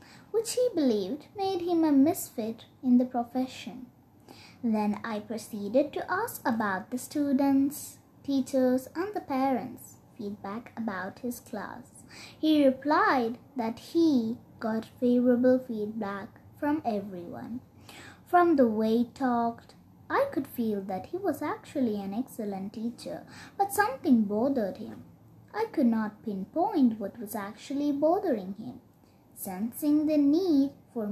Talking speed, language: 130 wpm, English